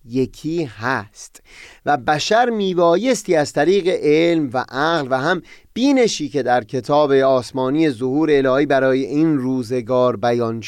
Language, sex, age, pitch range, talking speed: Persian, male, 30-49, 125-190 Hz, 130 wpm